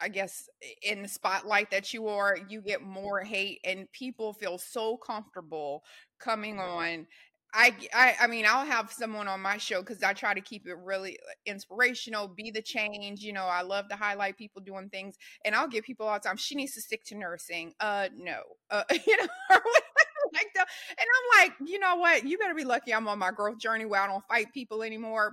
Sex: female